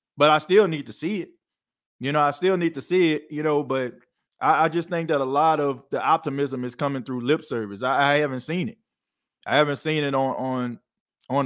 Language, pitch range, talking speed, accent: English, 125-150 Hz, 235 wpm, American